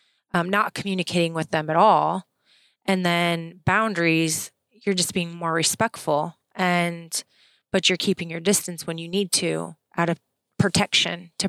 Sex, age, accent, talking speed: female, 20-39, American, 150 wpm